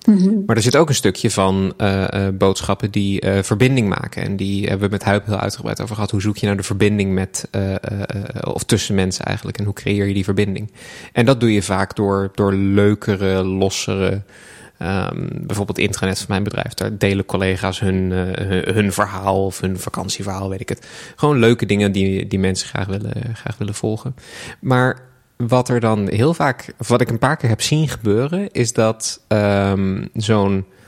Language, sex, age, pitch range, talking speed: Dutch, male, 20-39, 100-125 Hz, 190 wpm